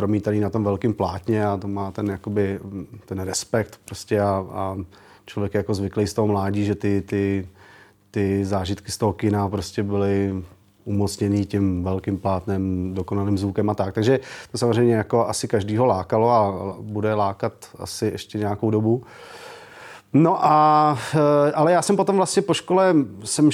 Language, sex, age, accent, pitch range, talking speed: Czech, male, 30-49, native, 100-125 Hz, 165 wpm